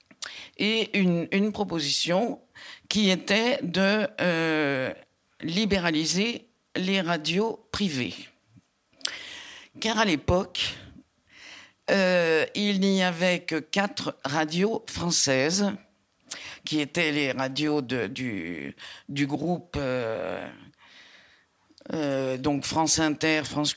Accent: French